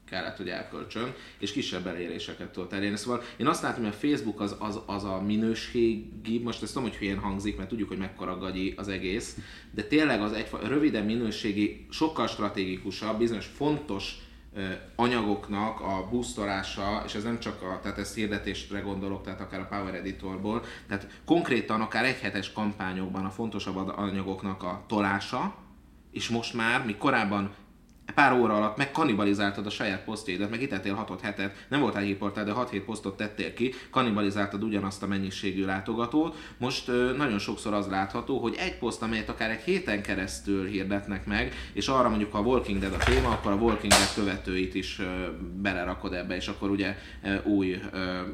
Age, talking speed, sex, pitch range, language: 30-49, 165 wpm, male, 95-110 Hz, Hungarian